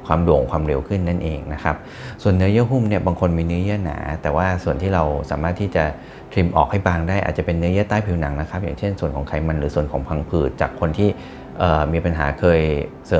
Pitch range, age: 75-90 Hz, 30-49